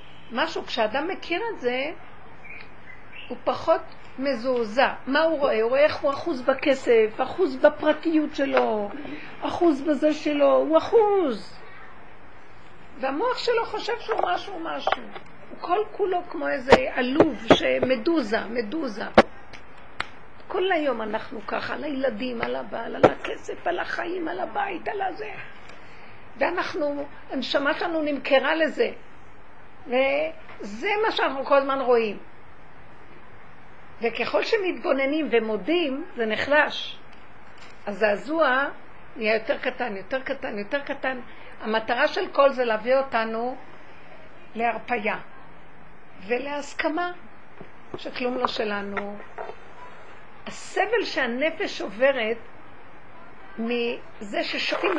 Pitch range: 245-335 Hz